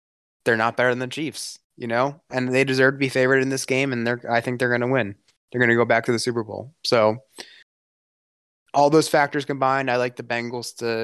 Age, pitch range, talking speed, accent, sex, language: 20-39, 115-135 Hz, 235 wpm, American, male, English